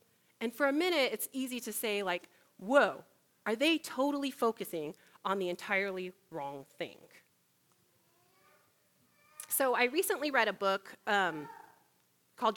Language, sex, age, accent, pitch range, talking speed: English, female, 30-49, American, 185-255 Hz, 130 wpm